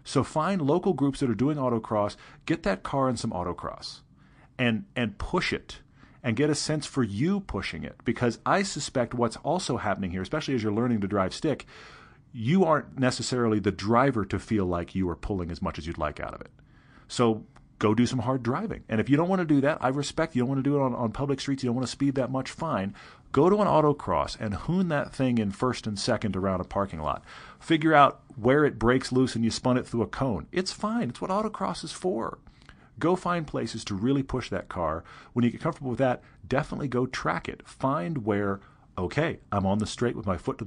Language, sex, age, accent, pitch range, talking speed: English, male, 40-59, American, 110-140 Hz, 235 wpm